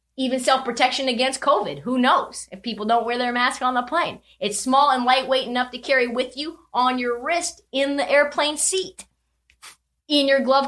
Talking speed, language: 190 wpm, English